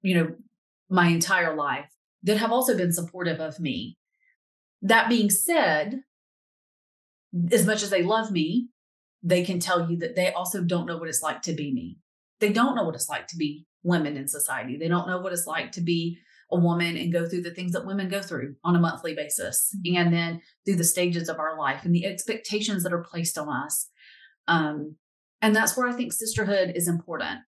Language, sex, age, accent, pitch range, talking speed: English, female, 30-49, American, 165-195 Hz, 205 wpm